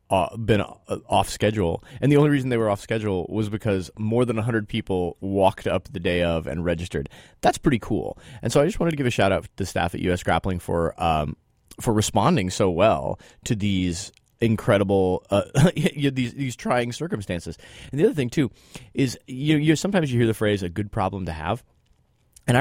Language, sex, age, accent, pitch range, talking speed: English, male, 30-49, American, 90-115 Hz, 205 wpm